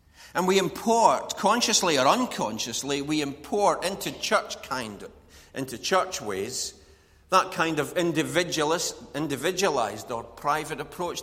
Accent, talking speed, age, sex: British, 125 wpm, 40-59, male